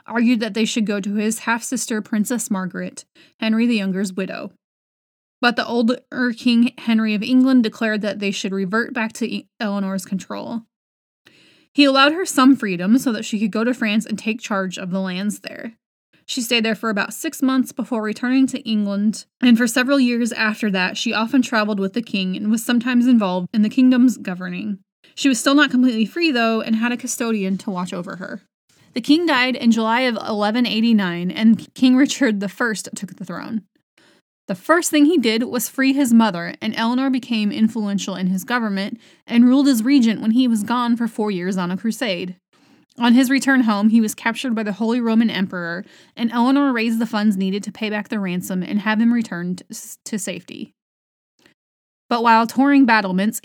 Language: English